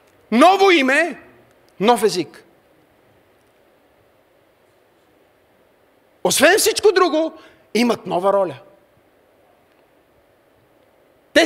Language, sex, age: Bulgarian, male, 40-59